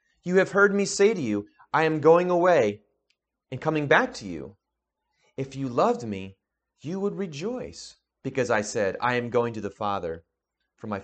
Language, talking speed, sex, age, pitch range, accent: English, 185 wpm, male, 30-49, 100-145 Hz, American